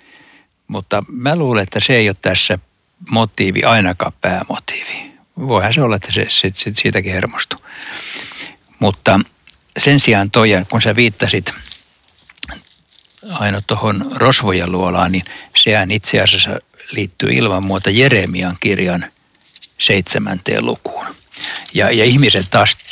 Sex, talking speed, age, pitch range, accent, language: male, 120 wpm, 60-79, 95-120 Hz, native, Finnish